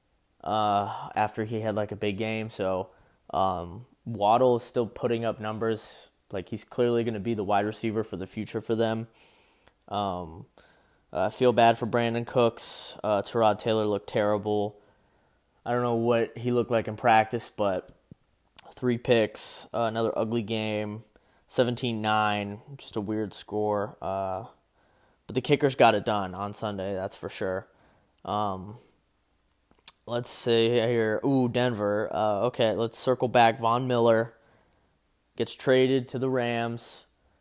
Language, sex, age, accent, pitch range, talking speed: English, male, 20-39, American, 105-120 Hz, 150 wpm